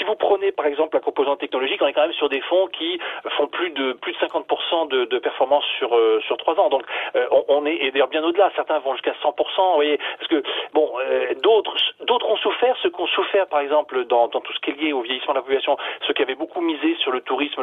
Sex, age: male, 40-59